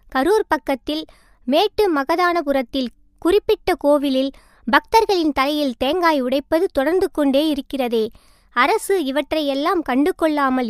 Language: Tamil